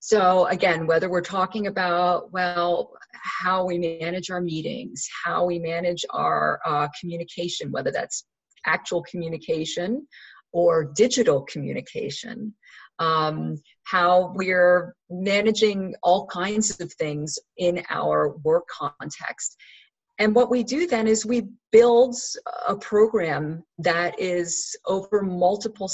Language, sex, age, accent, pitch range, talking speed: English, female, 40-59, American, 160-215 Hz, 120 wpm